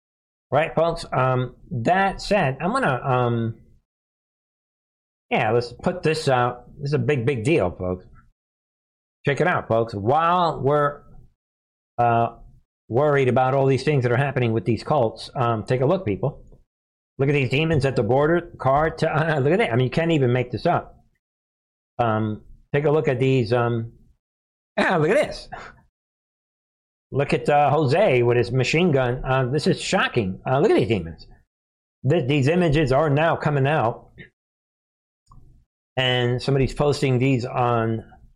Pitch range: 110-145 Hz